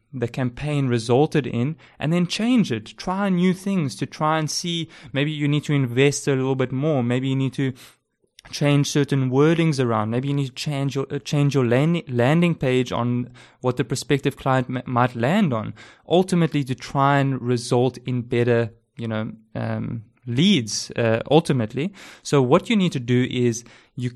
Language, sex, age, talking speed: English, male, 20-39, 180 wpm